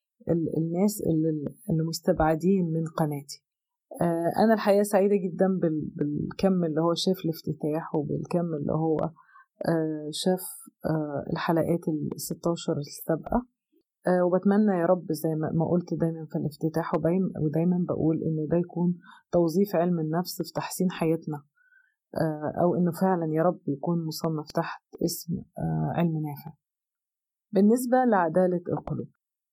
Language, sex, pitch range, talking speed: Arabic, female, 160-195 Hz, 110 wpm